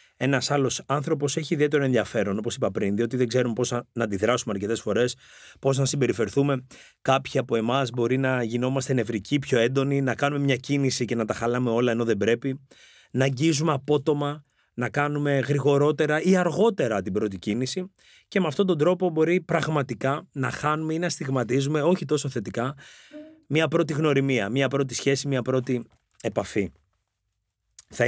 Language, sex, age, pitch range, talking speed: Greek, male, 30-49, 120-155 Hz, 165 wpm